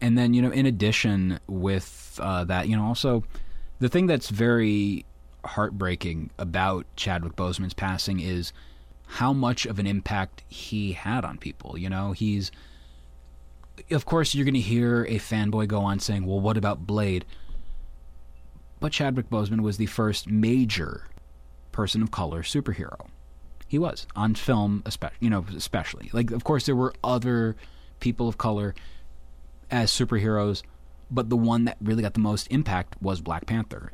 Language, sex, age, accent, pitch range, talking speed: English, male, 30-49, American, 70-115 Hz, 160 wpm